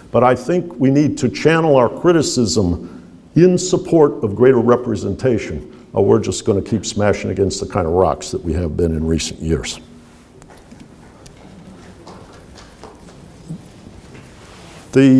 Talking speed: 130 wpm